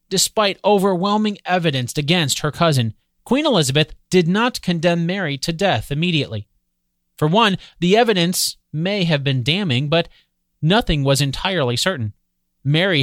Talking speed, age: 135 wpm, 30-49